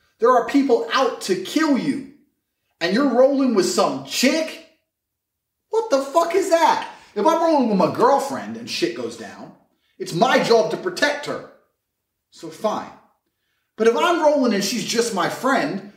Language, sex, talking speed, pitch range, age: English, male, 170 wpm, 200-310 Hz, 30-49